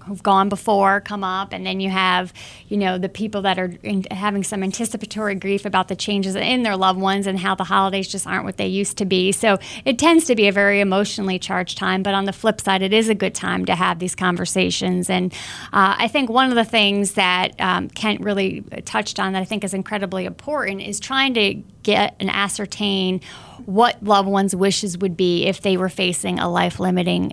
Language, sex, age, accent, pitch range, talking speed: English, female, 30-49, American, 190-215 Hz, 220 wpm